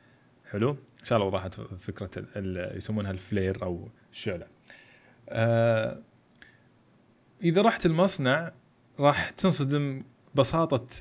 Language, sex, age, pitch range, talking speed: Arabic, male, 20-39, 110-145 Hz, 100 wpm